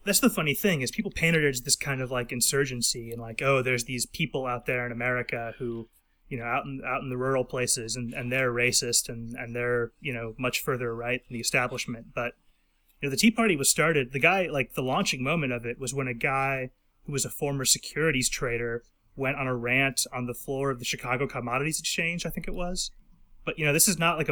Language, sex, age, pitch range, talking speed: English, male, 30-49, 120-140 Hz, 240 wpm